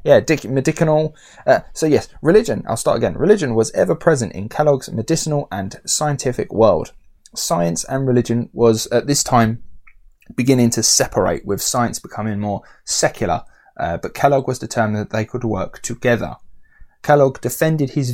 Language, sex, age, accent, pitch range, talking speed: English, male, 20-39, British, 110-140 Hz, 155 wpm